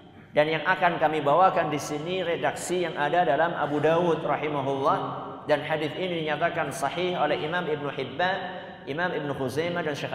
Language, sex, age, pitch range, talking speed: Malay, male, 50-69, 140-190 Hz, 165 wpm